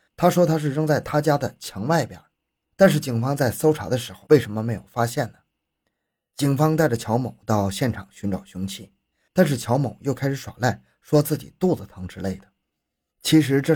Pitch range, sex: 95-130 Hz, male